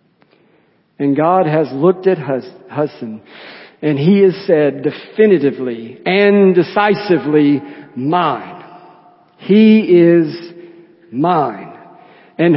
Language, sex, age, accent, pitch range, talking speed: English, male, 50-69, American, 140-190 Hz, 85 wpm